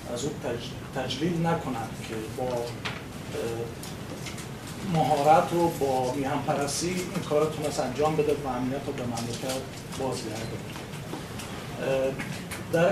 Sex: male